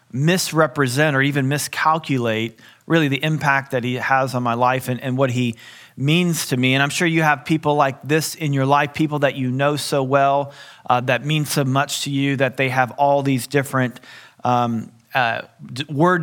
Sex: male